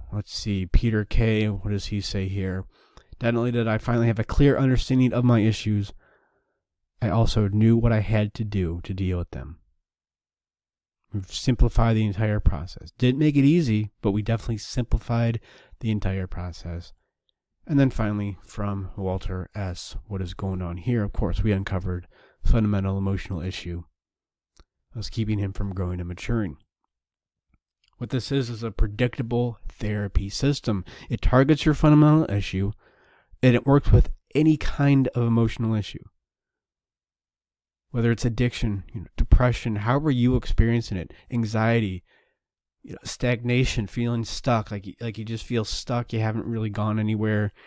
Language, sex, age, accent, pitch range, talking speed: English, male, 30-49, American, 95-115 Hz, 155 wpm